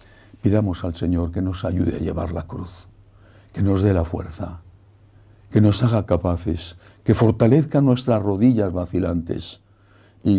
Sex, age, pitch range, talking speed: male, 60-79, 90-105 Hz, 145 wpm